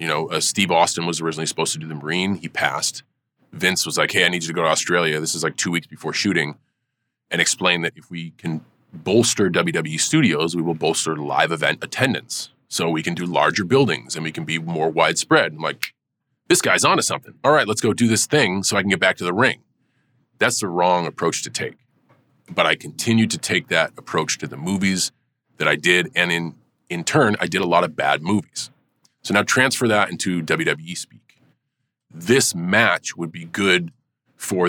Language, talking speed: English, 215 wpm